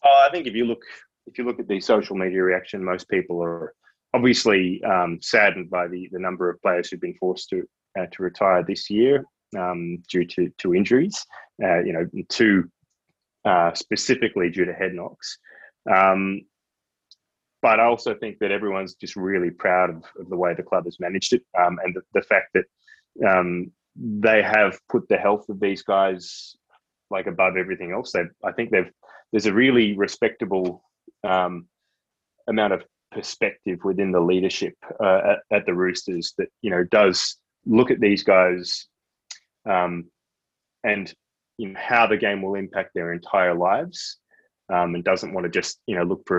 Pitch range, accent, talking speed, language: 90-100 Hz, Australian, 180 wpm, English